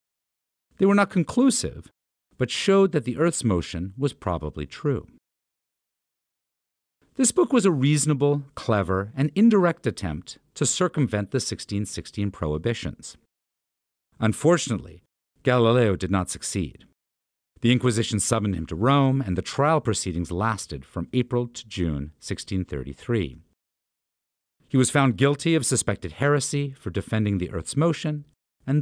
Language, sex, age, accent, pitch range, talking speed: English, male, 50-69, American, 90-145 Hz, 125 wpm